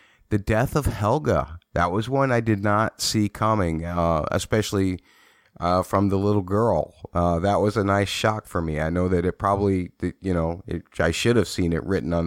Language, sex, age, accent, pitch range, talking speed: English, male, 30-49, American, 85-100 Hz, 200 wpm